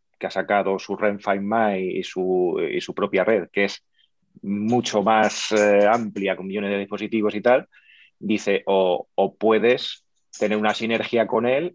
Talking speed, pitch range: 165 wpm, 100-115 Hz